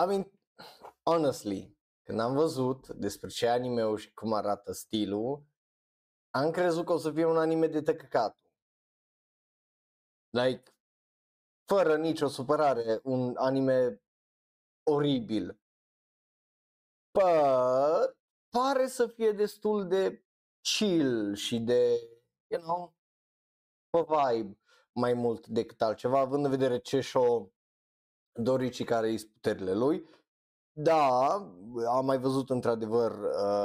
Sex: male